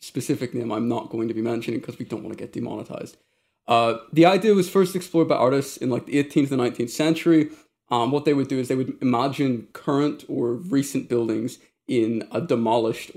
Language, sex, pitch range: English, male, 120-150 Hz